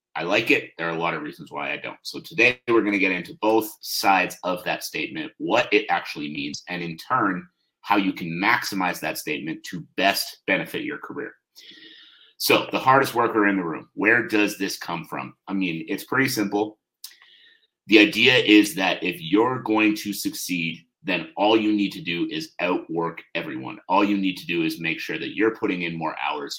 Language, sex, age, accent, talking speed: English, male, 30-49, American, 205 wpm